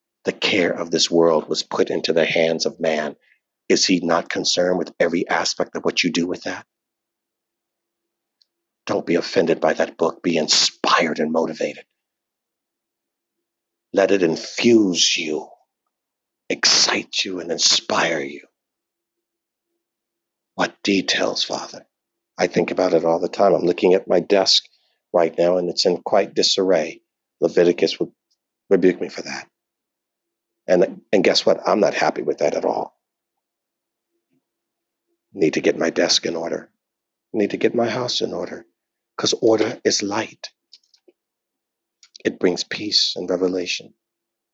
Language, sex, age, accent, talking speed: English, male, 50-69, American, 145 wpm